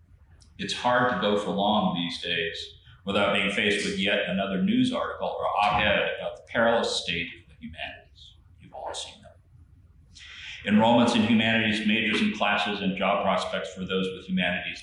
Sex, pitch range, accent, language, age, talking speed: male, 90-115 Hz, American, English, 40-59, 170 wpm